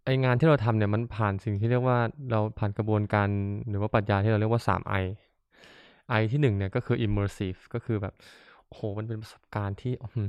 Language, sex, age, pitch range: Thai, male, 20-39, 105-120 Hz